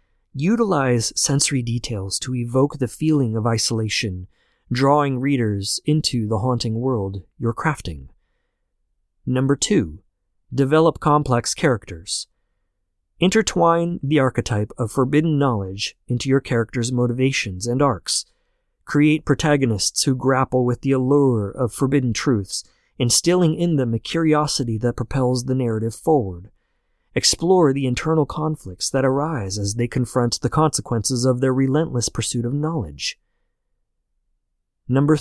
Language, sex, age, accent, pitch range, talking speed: English, male, 30-49, American, 110-145 Hz, 125 wpm